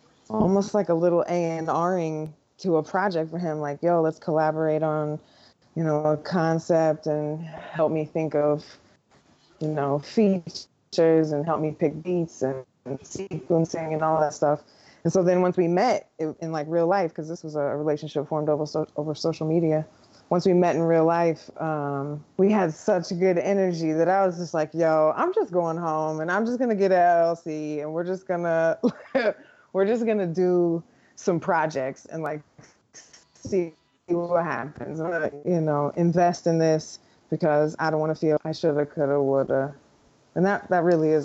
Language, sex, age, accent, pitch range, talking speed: English, female, 20-39, American, 150-175 Hz, 195 wpm